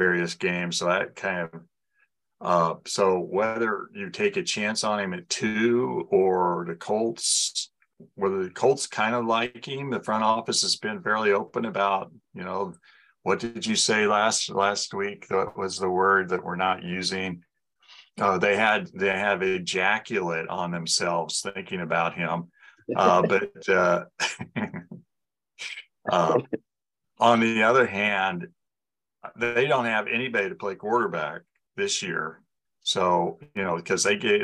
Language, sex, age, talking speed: English, male, 50-69, 150 wpm